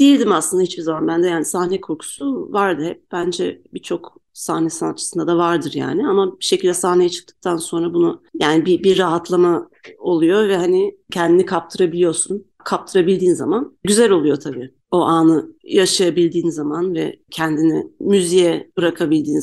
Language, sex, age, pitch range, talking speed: Turkish, female, 40-59, 165-205 Hz, 145 wpm